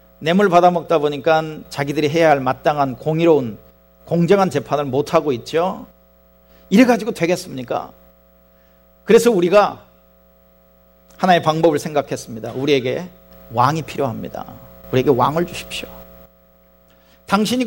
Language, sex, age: Korean, male, 40-59